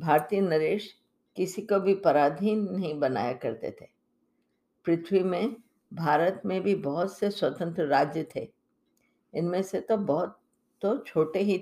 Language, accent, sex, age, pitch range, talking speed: Hindi, native, female, 50-69, 160-200 Hz, 140 wpm